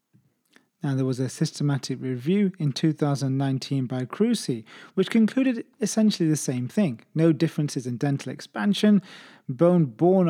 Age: 30-49